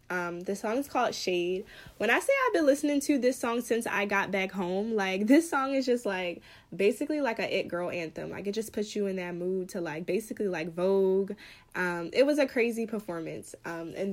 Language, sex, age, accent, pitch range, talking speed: English, female, 10-29, American, 185-220 Hz, 225 wpm